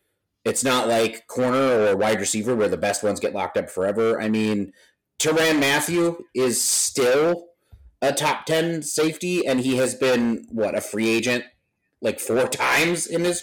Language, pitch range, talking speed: English, 115-175 Hz, 170 wpm